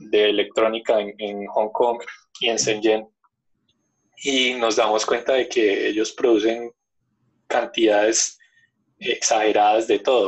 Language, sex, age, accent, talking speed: Spanish, male, 20-39, Colombian, 125 wpm